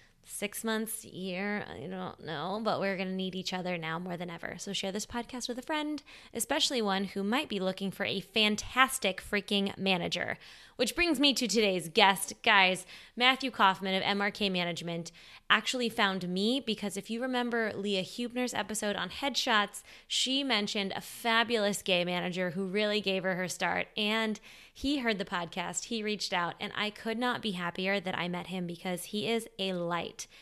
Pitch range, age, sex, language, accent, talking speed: 180-220 Hz, 20-39, female, English, American, 185 wpm